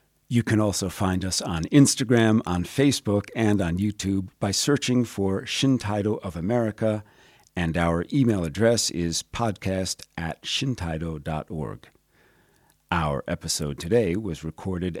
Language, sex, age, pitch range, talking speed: English, male, 50-69, 85-110 Hz, 125 wpm